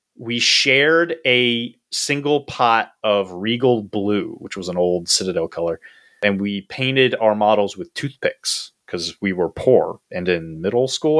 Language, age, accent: English, 30-49, American